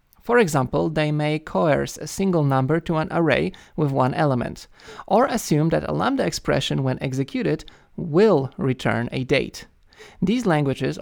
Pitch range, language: 130-185 Hz, English